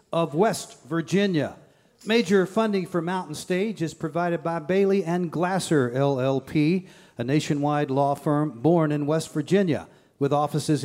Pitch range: 150-185 Hz